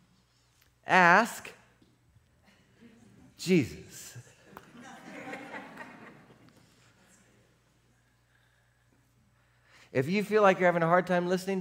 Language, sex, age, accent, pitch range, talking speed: English, male, 50-69, American, 85-140 Hz, 60 wpm